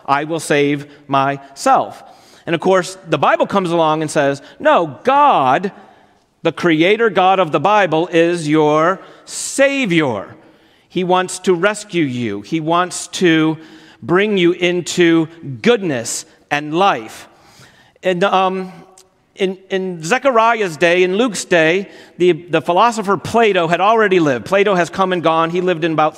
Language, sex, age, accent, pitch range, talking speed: English, male, 40-59, American, 155-200 Hz, 145 wpm